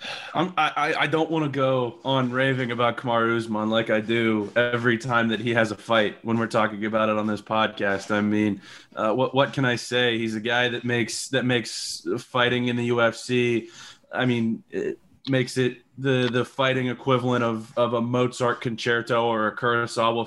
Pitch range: 115-125 Hz